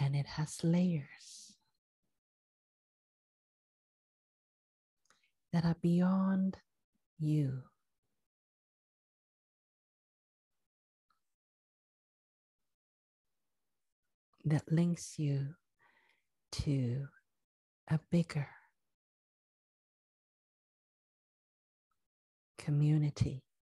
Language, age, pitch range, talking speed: English, 50-69, 135-170 Hz, 40 wpm